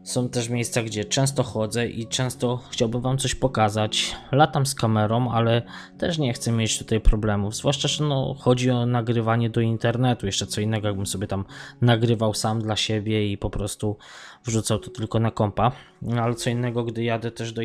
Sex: male